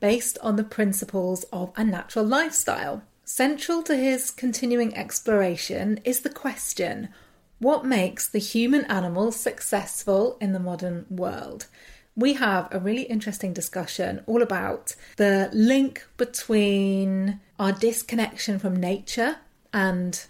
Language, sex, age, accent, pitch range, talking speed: English, female, 30-49, British, 195-250 Hz, 125 wpm